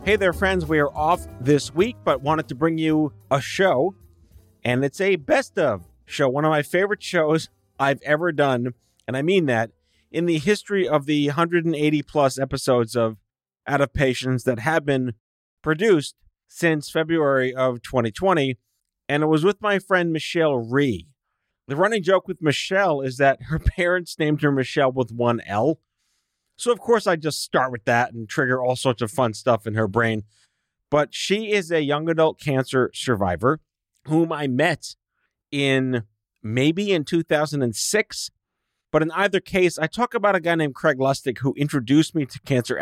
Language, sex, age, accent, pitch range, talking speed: English, male, 40-59, American, 125-165 Hz, 175 wpm